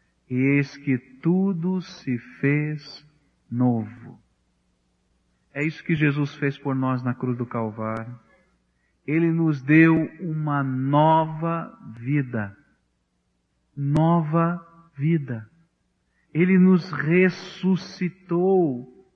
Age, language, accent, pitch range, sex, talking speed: 50-69, English, Brazilian, 135-205 Hz, male, 90 wpm